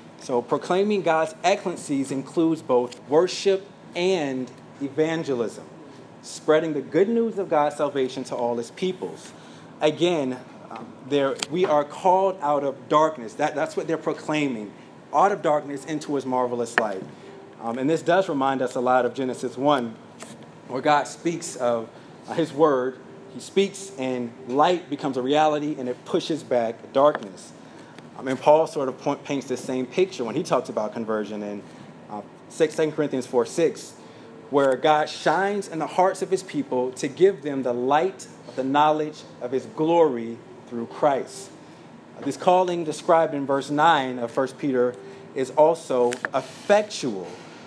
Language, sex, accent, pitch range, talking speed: English, male, American, 130-165 Hz, 155 wpm